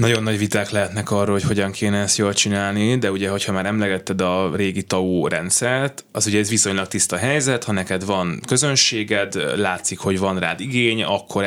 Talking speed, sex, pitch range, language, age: 190 wpm, male, 90-110 Hz, Hungarian, 20-39